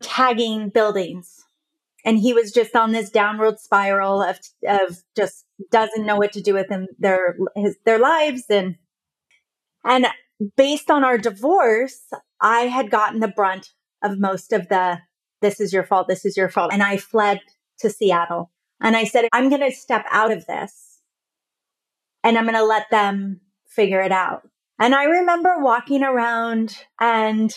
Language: English